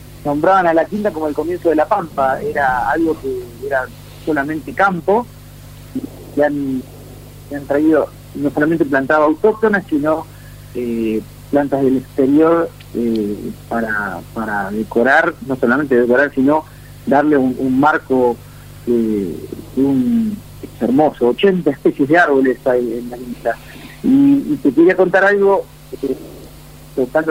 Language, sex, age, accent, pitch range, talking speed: Spanish, male, 40-59, Argentinian, 130-165 Hz, 130 wpm